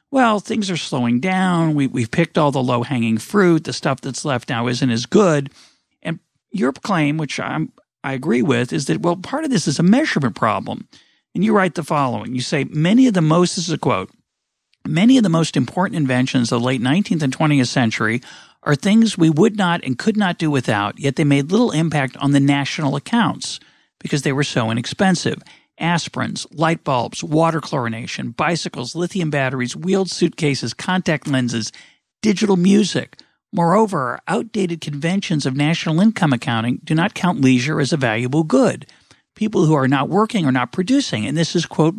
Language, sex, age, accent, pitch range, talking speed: English, male, 40-59, American, 130-180 Hz, 190 wpm